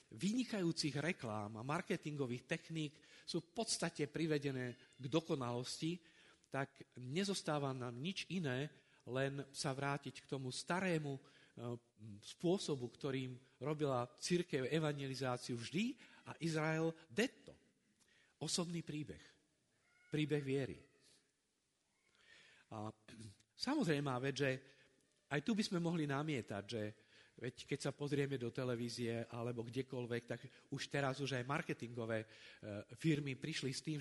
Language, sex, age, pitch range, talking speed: Slovak, male, 50-69, 125-165 Hz, 115 wpm